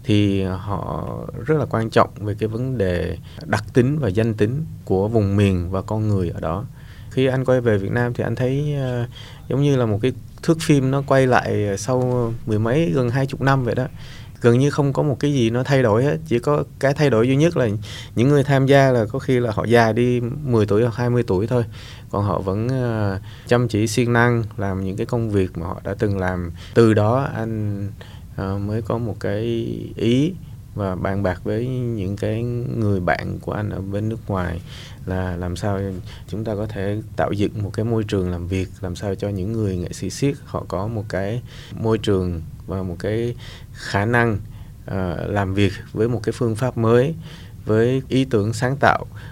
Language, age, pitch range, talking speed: Vietnamese, 20-39, 100-125 Hz, 210 wpm